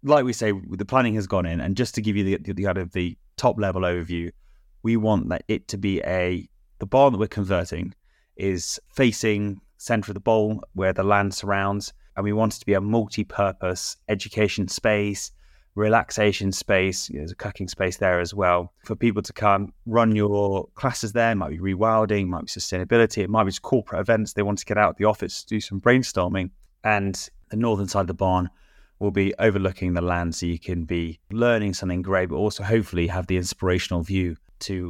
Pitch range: 95-110 Hz